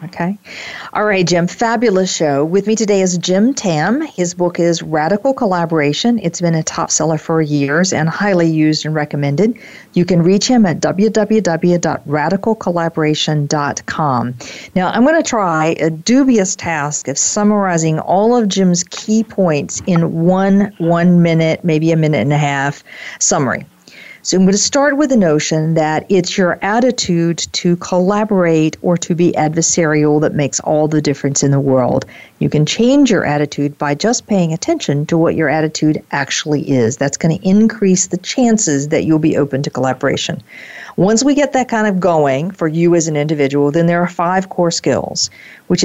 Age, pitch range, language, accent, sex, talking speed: 50-69, 155-200 Hz, English, American, female, 175 wpm